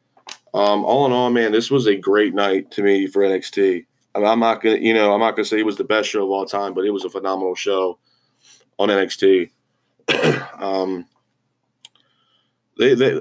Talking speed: 200 wpm